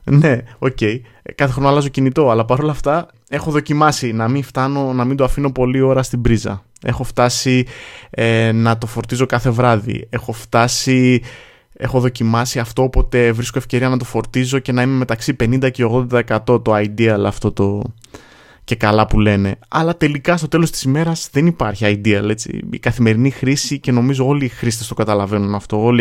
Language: Greek